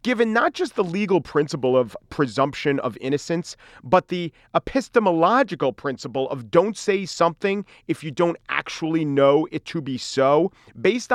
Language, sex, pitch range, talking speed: English, male, 125-170 Hz, 150 wpm